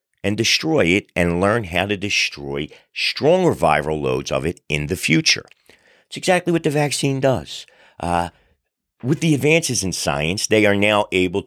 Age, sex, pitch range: 50-69, male, 80-115 Hz